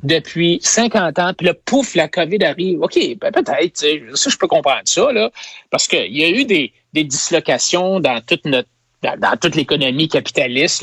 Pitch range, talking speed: 155-255 Hz, 200 wpm